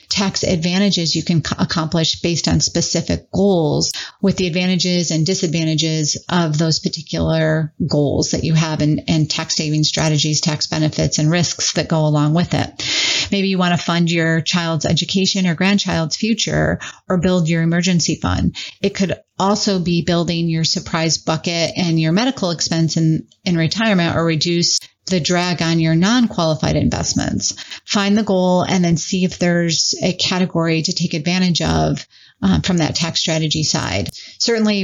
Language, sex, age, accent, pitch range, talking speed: English, female, 40-59, American, 160-185 Hz, 160 wpm